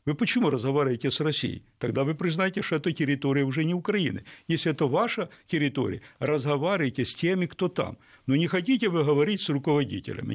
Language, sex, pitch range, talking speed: Russian, male, 130-170 Hz, 175 wpm